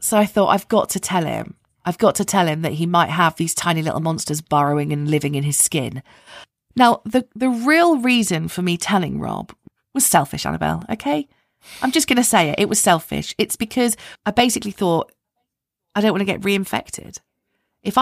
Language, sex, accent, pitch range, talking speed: English, female, British, 160-220 Hz, 205 wpm